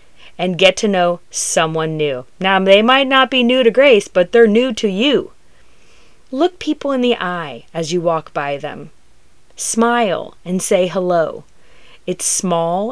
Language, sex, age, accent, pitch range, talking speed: English, female, 30-49, American, 165-230 Hz, 165 wpm